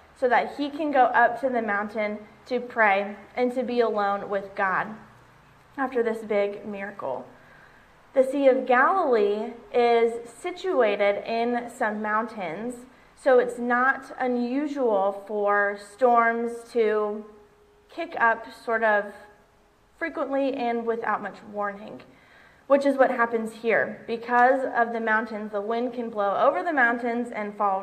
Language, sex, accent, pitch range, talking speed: English, female, American, 205-245 Hz, 140 wpm